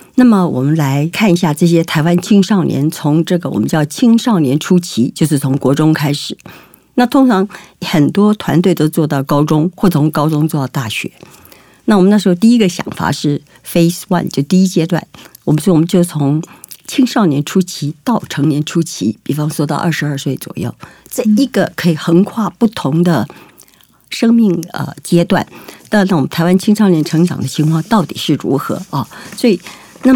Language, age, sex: Chinese, 50-69, female